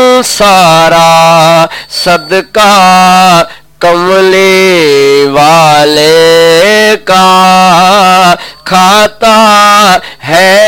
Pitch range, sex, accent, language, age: 180-250 Hz, male, Indian, English, 50-69